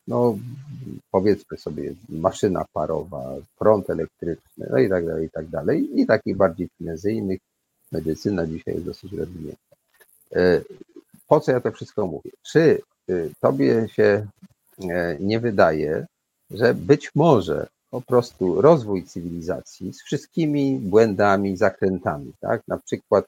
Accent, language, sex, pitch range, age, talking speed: native, Polish, male, 90-115 Hz, 50-69, 125 wpm